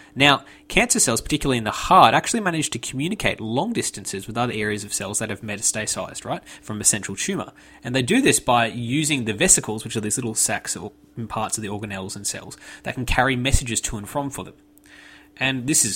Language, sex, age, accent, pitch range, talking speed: English, male, 20-39, Australian, 110-140 Hz, 220 wpm